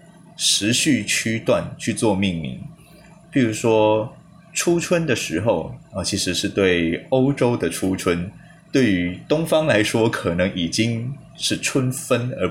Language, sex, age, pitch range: Chinese, male, 20-39, 95-140 Hz